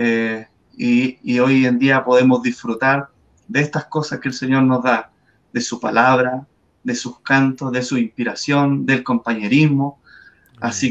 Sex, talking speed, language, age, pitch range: male, 155 wpm, Spanish, 30-49, 125-150 Hz